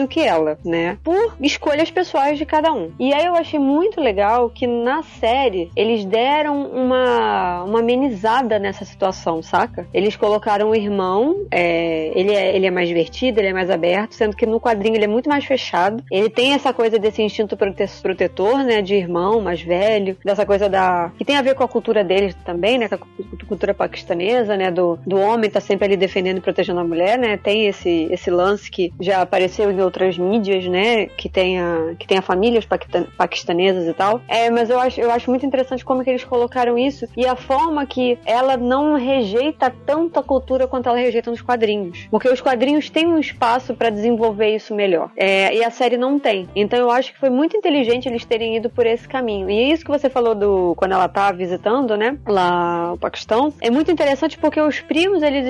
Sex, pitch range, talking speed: female, 195-265 Hz, 205 wpm